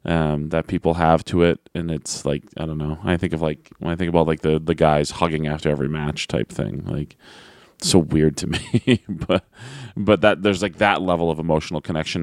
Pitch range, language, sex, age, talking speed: 80-95 Hz, English, male, 20-39, 225 wpm